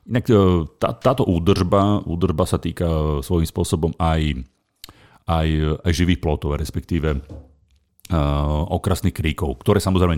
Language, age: Slovak, 40-59